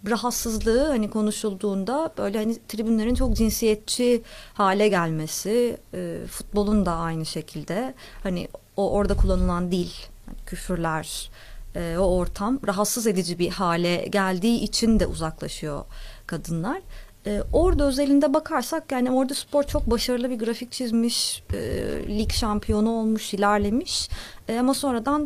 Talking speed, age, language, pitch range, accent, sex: 115 wpm, 30-49, Turkish, 180-235 Hz, native, female